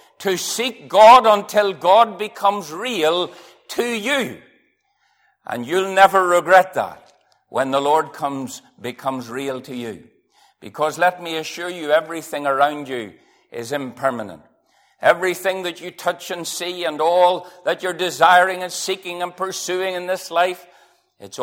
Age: 60-79